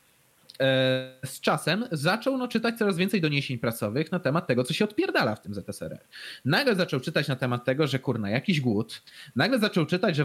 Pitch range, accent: 130-180 Hz, native